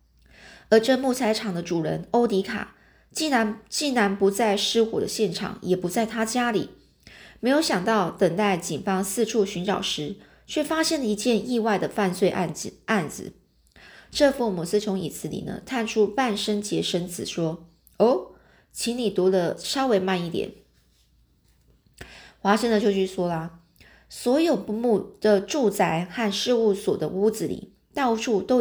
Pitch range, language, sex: 185-225 Hz, Chinese, female